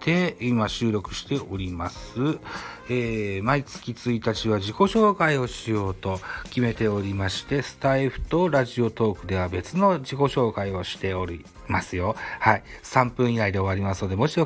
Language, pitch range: Japanese, 95-130 Hz